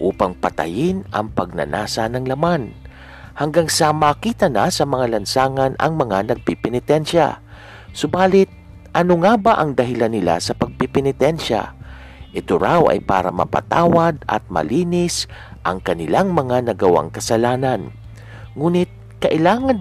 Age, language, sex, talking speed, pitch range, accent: 50-69, Filipino, male, 120 wpm, 95-150 Hz, native